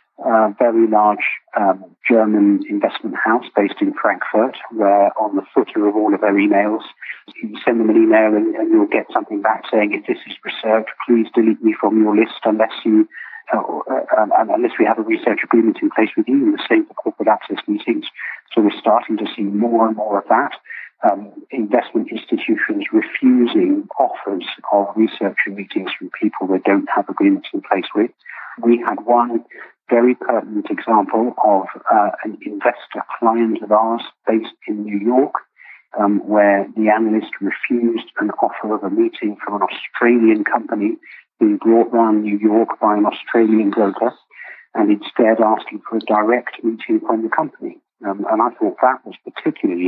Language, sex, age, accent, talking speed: English, male, 40-59, British, 175 wpm